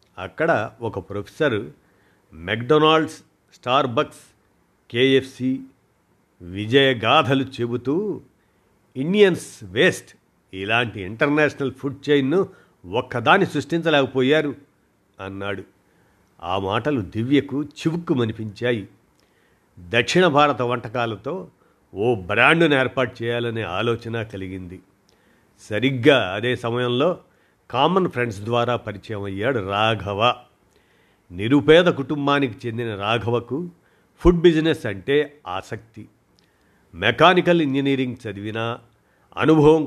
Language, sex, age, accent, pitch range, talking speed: Telugu, male, 50-69, native, 110-145 Hz, 75 wpm